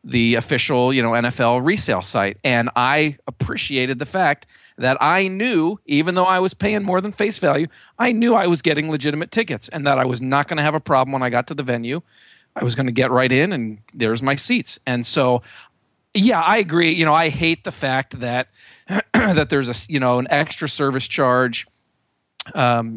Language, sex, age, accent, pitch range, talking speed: English, male, 40-59, American, 125-160 Hz, 210 wpm